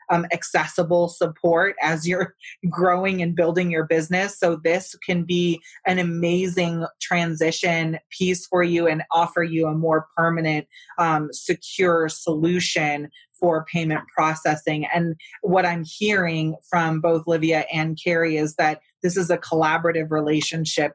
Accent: American